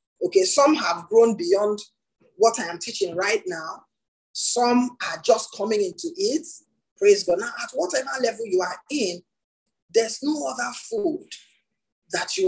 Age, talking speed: 20-39, 155 wpm